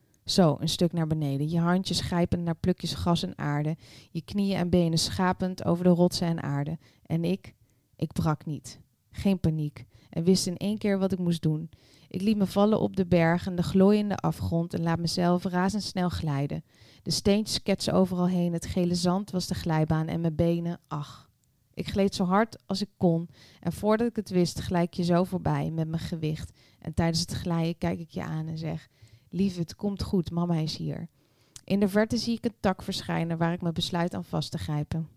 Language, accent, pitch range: Dutch, Dutch, 145-180 Hz